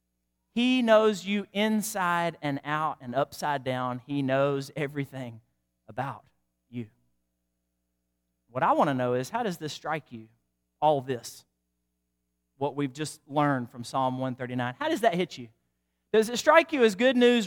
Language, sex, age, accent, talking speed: English, male, 40-59, American, 160 wpm